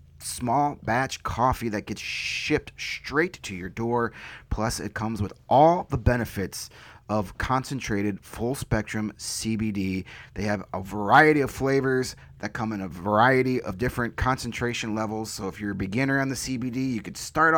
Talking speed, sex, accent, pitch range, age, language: 160 wpm, male, American, 100-125 Hz, 30-49, English